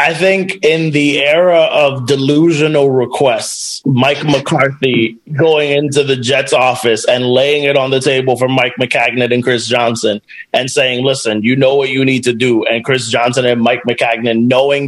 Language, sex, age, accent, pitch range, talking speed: English, male, 30-49, American, 130-170 Hz, 180 wpm